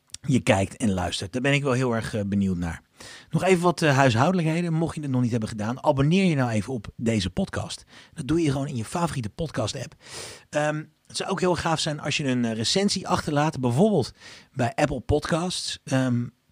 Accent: Dutch